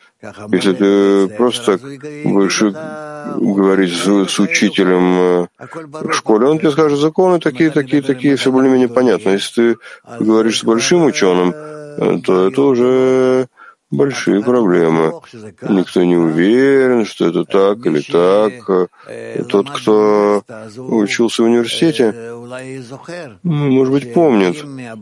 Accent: native